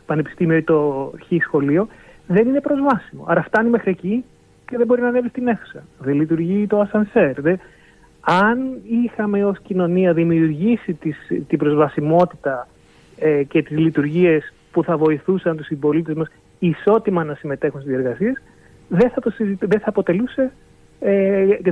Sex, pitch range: male, 150-200 Hz